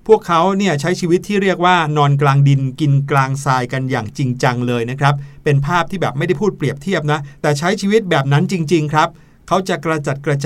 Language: Thai